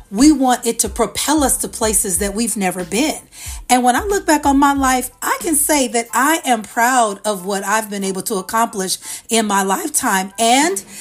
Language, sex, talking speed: English, female, 205 wpm